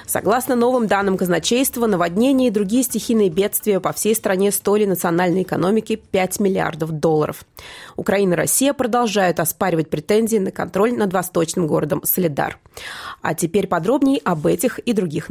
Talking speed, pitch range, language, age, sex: 145 wpm, 175-220 Hz, Russian, 20-39, female